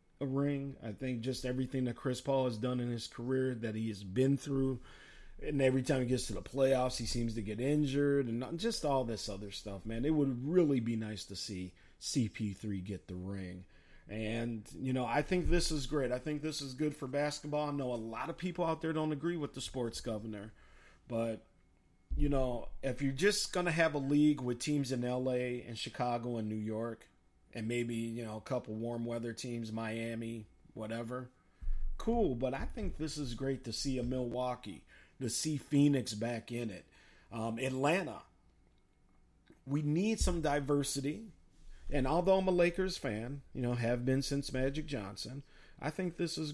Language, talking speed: English, 190 wpm